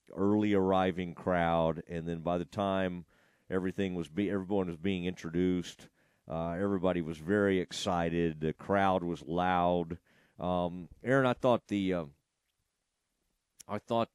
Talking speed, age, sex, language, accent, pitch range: 135 wpm, 40-59, male, English, American, 90-120 Hz